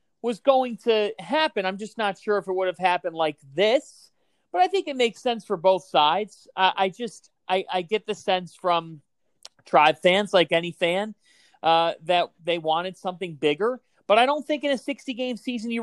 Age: 40-59